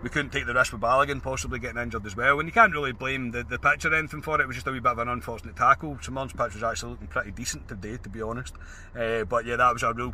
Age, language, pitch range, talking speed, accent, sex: 30-49, English, 110-130 Hz, 310 wpm, British, male